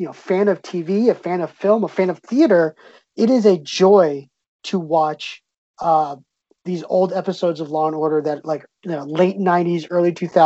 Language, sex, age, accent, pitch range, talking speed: English, male, 20-39, American, 155-190 Hz, 195 wpm